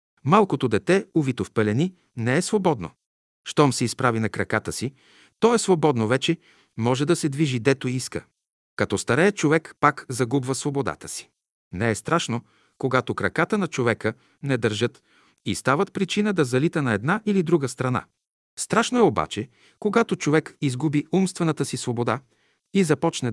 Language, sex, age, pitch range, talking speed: Bulgarian, male, 50-69, 120-165 Hz, 155 wpm